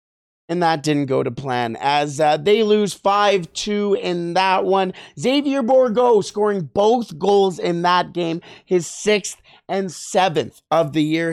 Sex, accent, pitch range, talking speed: male, American, 150-205 Hz, 155 wpm